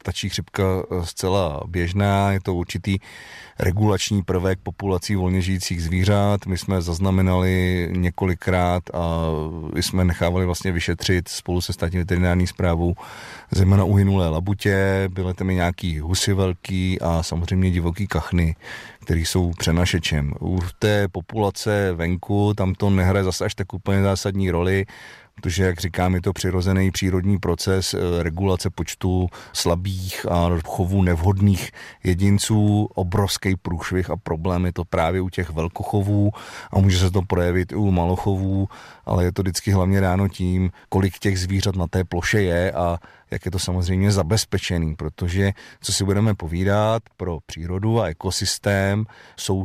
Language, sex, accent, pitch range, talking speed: Czech, male, native, 90-100 Hz, 145 wpm